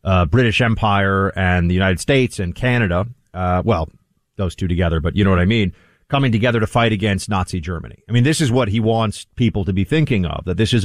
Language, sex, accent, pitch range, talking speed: English, male, American, 95-125 Hz, 230 wpm